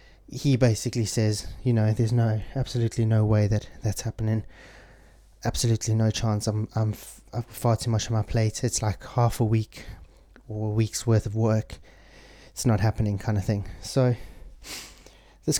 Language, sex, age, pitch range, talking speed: English, male, 20-39, 105-120 Hz, 175 wpm